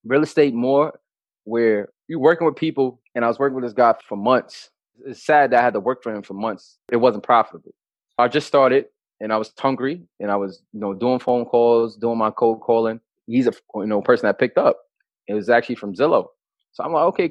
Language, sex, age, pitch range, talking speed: English, male, 20-39, 110-145 Hz, 230 wpm